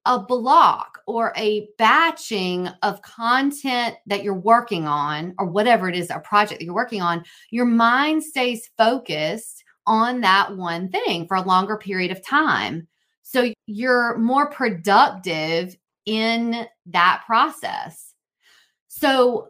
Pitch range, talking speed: 175-225 Hz, 130 wpm